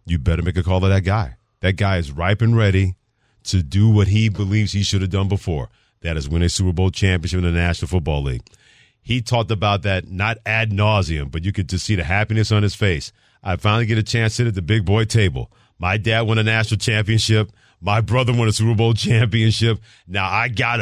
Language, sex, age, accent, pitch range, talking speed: English, male, 40-59, American, 95-115 Hz, 235 wpm